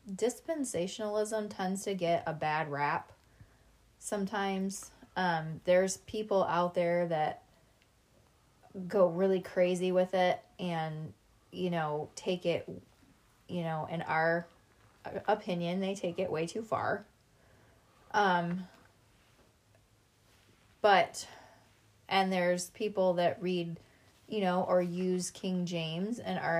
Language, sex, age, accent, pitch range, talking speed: English, female, 20-39, American, 165-195 Hz, 115 wpm